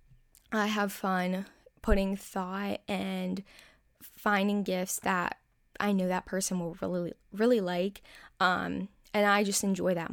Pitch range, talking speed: 190-230 Hz, 135 wpm